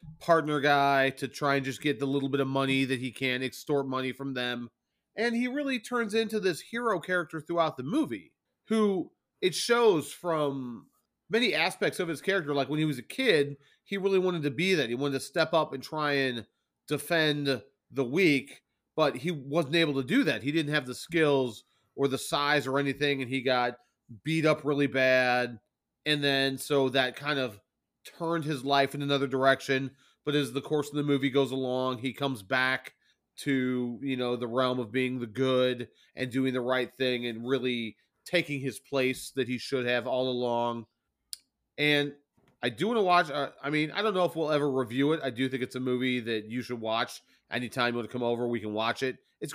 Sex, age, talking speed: male, 30-49, 210 wpm